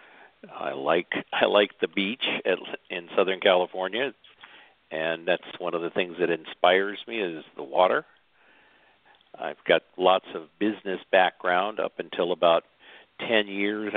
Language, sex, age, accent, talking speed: English, male, 50-69, American, 140 wpm